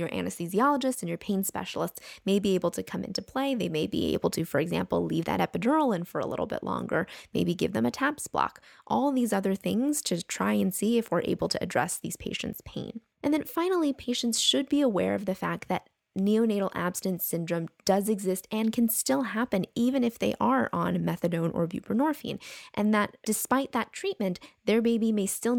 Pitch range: 175-230 Hz